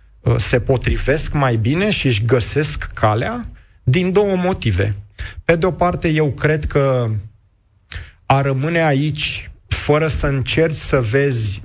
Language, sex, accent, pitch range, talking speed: Romanian, male, native, 110-145 Hz, 130 wpm